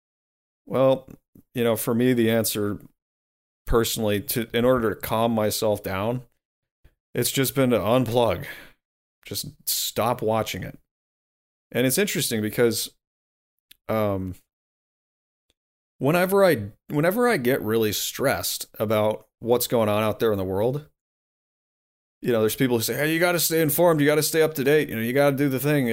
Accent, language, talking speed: American, English, 165 wpm